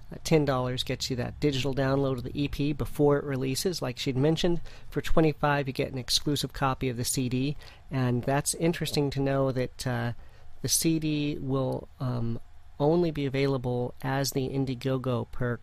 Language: English